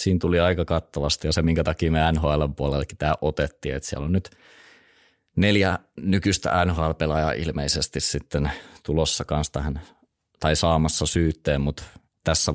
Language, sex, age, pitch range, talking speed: Finnish, male, 30-49, 75-90 Hz, 150 wpm